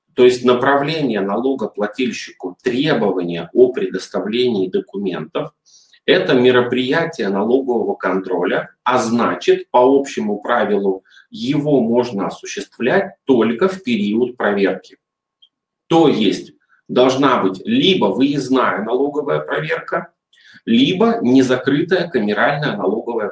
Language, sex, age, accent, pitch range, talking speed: Russian, male, 30-49, native, 115-175 Hz, 95 wpm